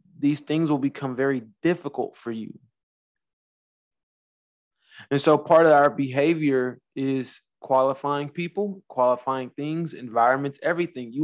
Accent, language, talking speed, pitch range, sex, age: American, English, 115 wpm, 120-140 Hz, male, 20-39